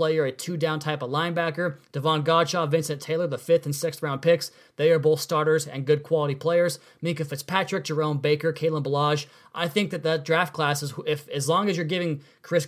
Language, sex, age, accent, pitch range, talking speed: English, male, 30-49, American, 145-170 Hz, 210 wpm